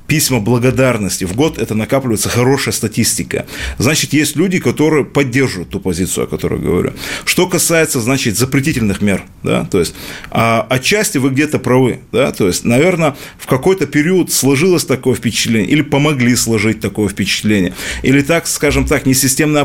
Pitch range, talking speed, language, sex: 110-140 Hz, 155 wpm, Russian, male